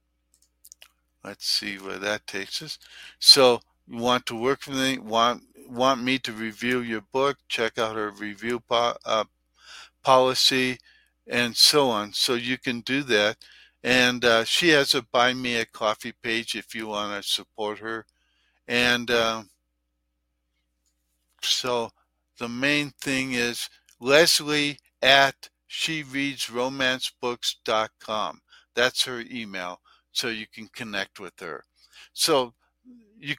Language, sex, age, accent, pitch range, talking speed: English, male, 60-79, American, 110-140 Hz, 130 wpm